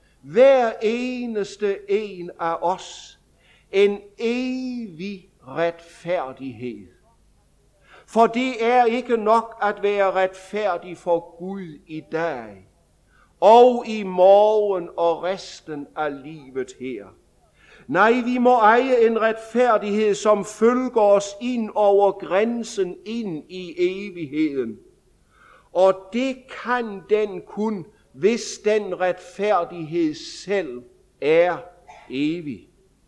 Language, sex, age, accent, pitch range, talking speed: English, male, 60-79, German, 180-230 Hz, 100 wpm